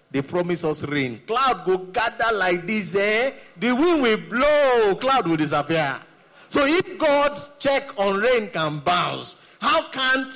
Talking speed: 150 wpm